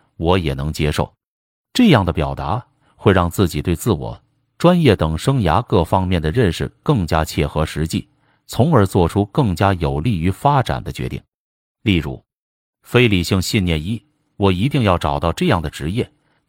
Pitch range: 80-115 Hz